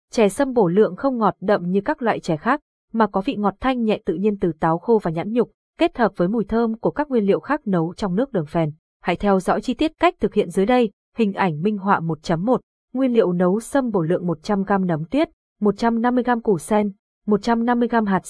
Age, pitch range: 20-39, 190-235 Hz